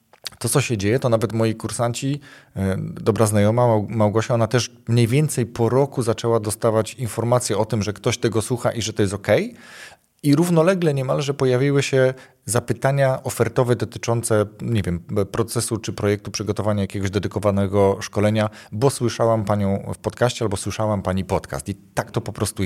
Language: Polish